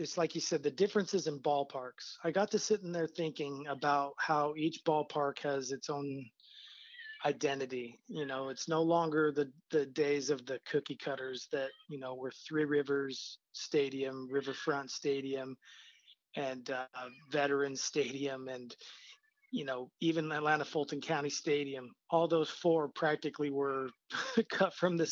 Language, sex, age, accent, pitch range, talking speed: English, male, 30-49, American, 140-160 Hz, 155 wpm